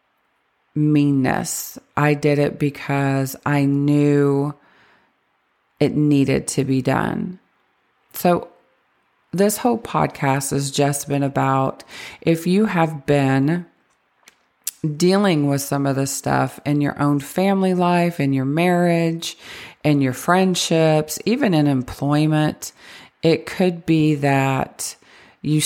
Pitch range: 135-155 Hz